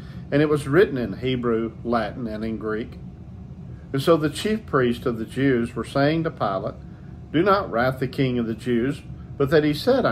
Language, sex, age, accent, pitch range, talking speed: English, male, 50-69, American, 115-145 Hz, 200 wpm